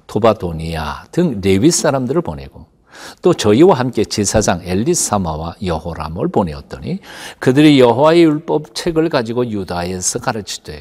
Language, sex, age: Korean, male, 60-79